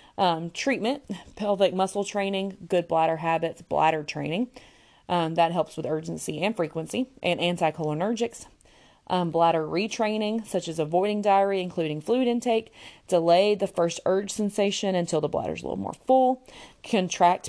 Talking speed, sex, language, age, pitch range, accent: 150 wpm, female, English, 30-49, 160-205 Hz, American